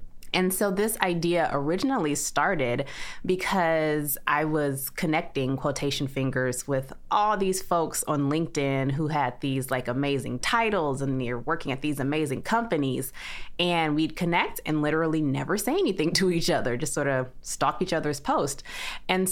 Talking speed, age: 155 wpm, 20-39